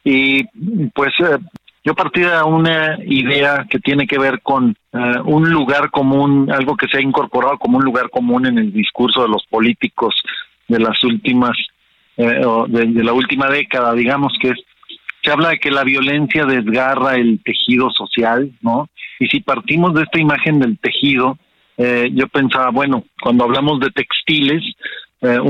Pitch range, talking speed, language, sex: 120-145 Hz, 170 wpm, Spanish, male